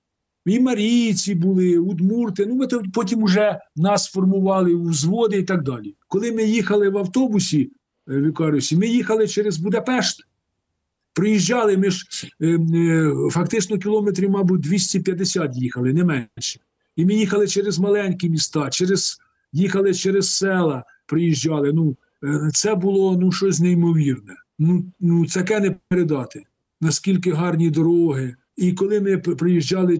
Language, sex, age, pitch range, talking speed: Ukrainian, male, 50-69, 145-195 Hz, 135 wpm